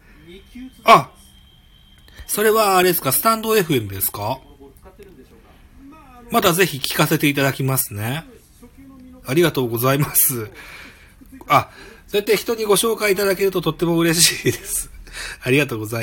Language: Japanese